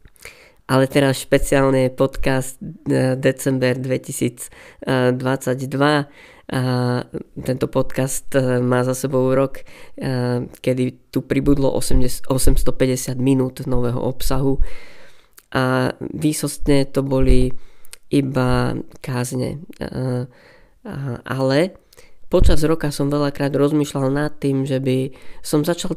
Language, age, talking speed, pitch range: Slovak, 20-39, 90 wpm, 125-140 Hz